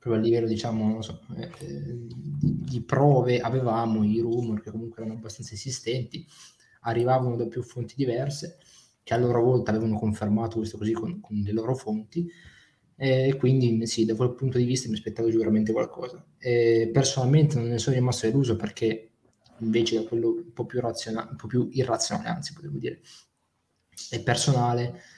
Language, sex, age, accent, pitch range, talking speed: Italian, male, 20-39, native, 110-125 Hz, 170 wpm